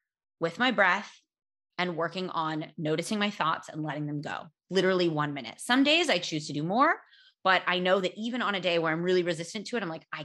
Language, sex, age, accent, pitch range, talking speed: English, female, 20-39, American, 165-220 Hz, 235 wpm